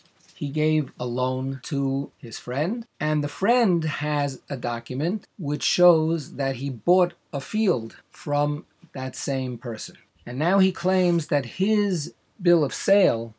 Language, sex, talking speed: English, male, 150 wpm